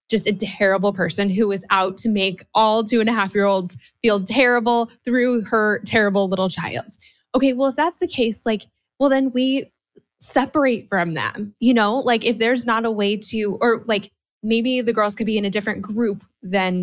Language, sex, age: English, female, 20-39